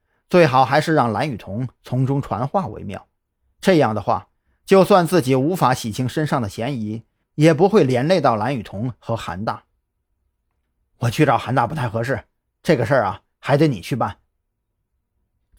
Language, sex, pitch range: Chinese, male, 115-180 Hz